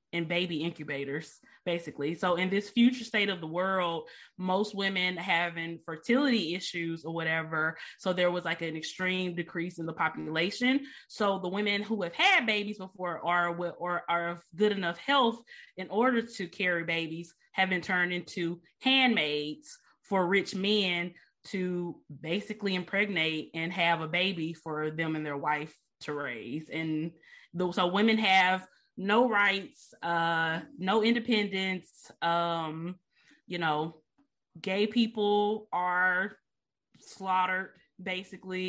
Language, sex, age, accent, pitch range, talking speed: English, female, 20-39, American, 165-195 Hz, 135 wpm